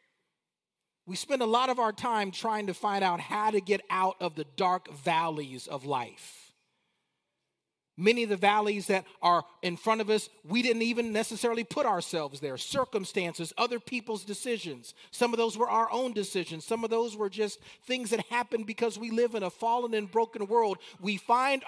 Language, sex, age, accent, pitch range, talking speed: English, male, 40-59, American, 185-240 Hz, 190 wpm